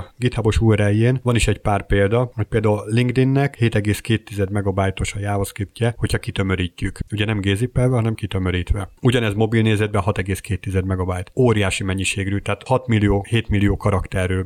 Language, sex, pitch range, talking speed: Hungarian, male, 100-120 Hz, 135 wpm